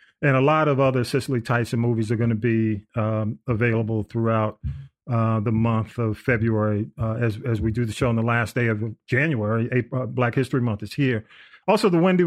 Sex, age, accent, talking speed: male, 40-59, American, 205 wpm